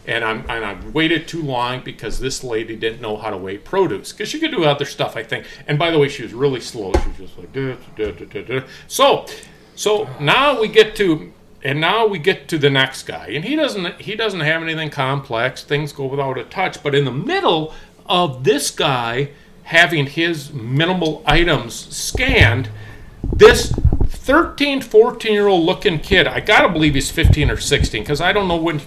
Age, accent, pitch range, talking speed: 40-59, American, 150-220 Hz, 205 wpm